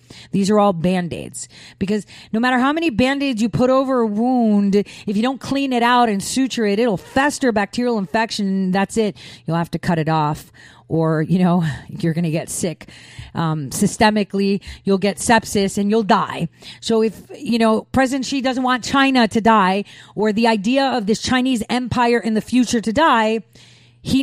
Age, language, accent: 40-59, English, American